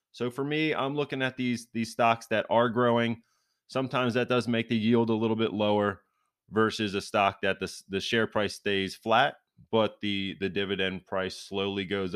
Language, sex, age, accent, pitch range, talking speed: English, male, 20-39, American, 95-115 Hz, 190 wpm